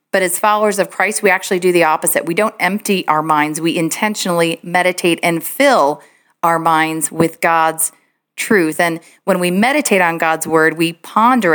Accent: American